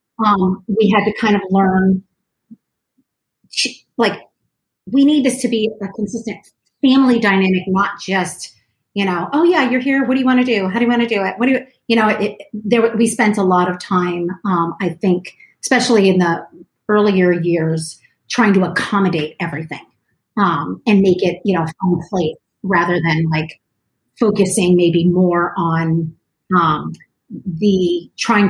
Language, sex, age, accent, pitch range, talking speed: English, female, 40-59, American, 180-230 Hz, 175 wpm